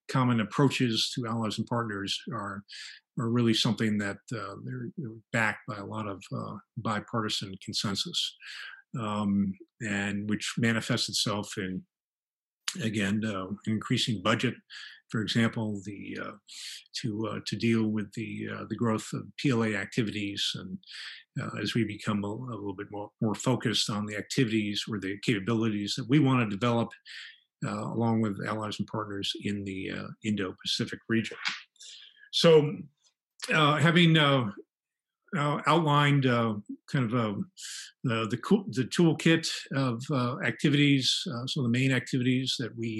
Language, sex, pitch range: English, male, 105-130 Hz